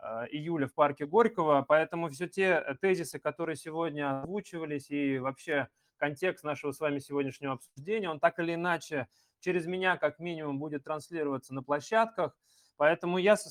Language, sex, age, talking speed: Russian, male, 20-39, 150 wpm